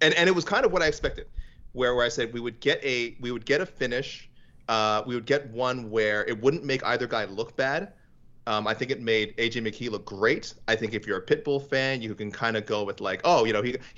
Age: 30-49